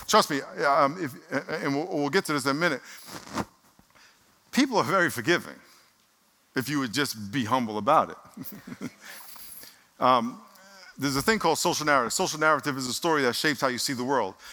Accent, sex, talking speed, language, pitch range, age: American, male, 180 wpm, English, 155-225 Hz, 50-69